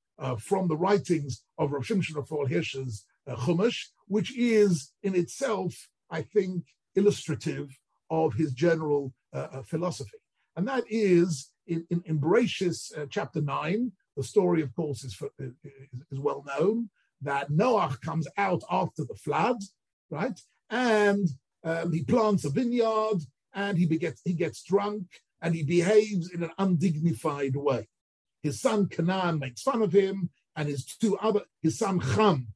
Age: 50-69